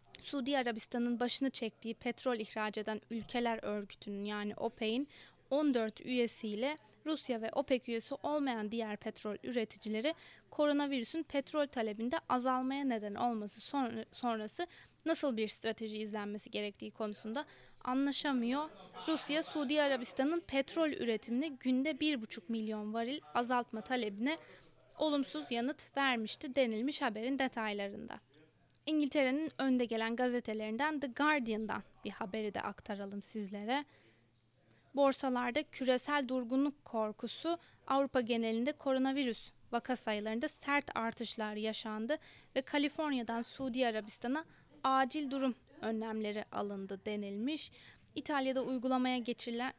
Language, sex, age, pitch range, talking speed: Turkish, female, 20-39, 220-280 Hz, 105 wpm